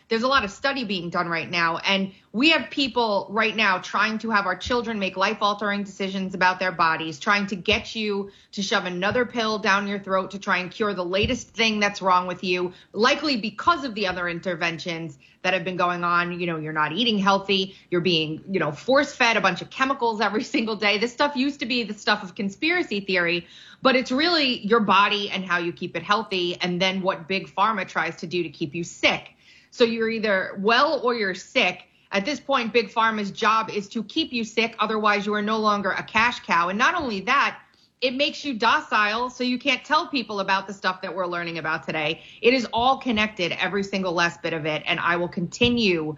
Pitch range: 180-230 Hz